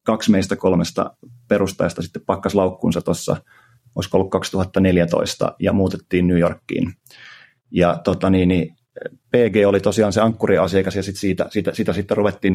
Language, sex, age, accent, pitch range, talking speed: Finnish, male, 30-49, native, 95-115 Hz, 145 wpm